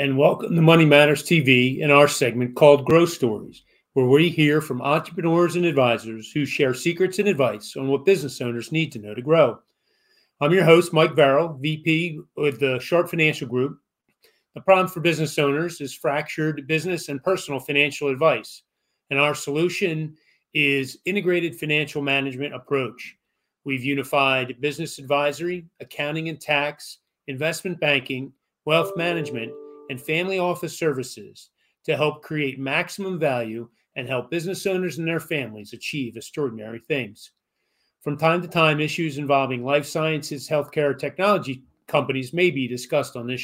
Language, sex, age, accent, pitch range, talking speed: English, male, 40-59, American, 135-165 Hz, 150 wpm